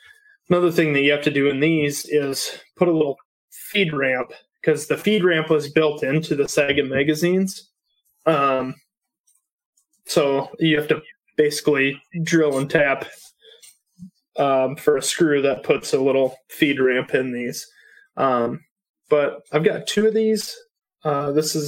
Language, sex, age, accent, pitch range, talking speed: English, male, 20-39, American, 145-180 Hz, 155 wpm